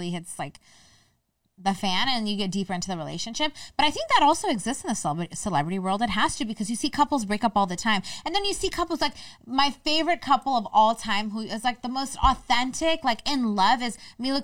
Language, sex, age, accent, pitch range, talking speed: English, female, 20-39, American, 200-265 Hz, 235 wpm